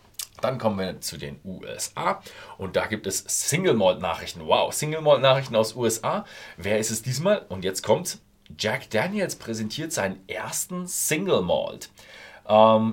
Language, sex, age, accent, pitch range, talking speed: German, male, 40-59, German, 100-140 Hz, 160 wpm